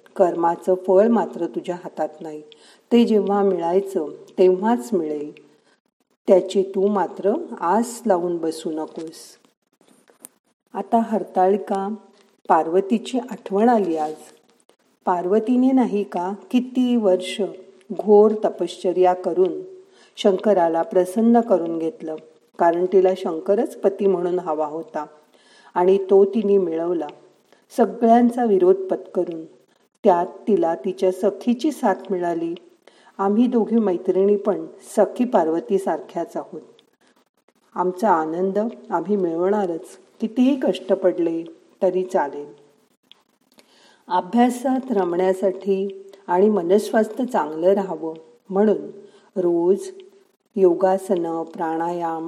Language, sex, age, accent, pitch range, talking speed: Marathi, female, 50-69, native, 175-215 Hz, 95 wpm